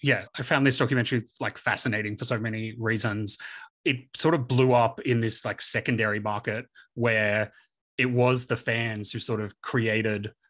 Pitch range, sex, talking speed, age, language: 110-125 Hz, male, 170 wpm, 30-49, English